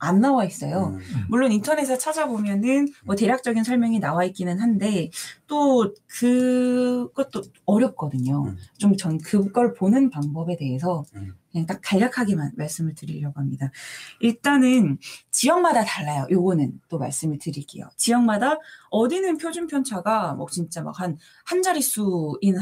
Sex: female